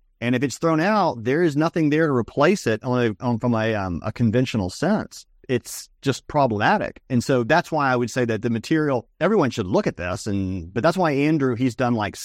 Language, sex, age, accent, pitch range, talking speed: English, male, 40-59, American, 110-145 Hz, 220 wpm